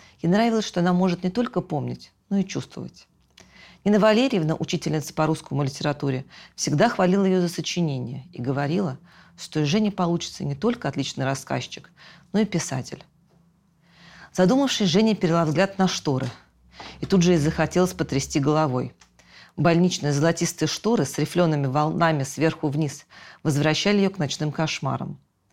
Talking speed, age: 145 wpm, 40-59